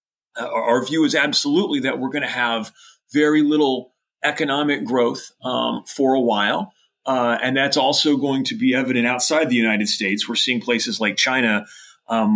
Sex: male